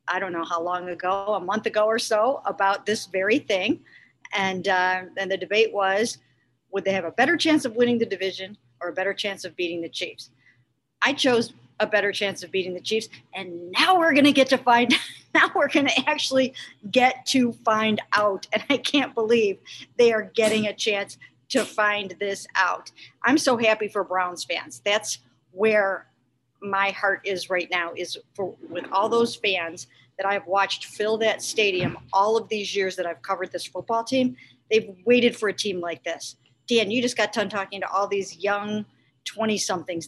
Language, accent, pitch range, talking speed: English, American, 185-225 Hz, 200 wpm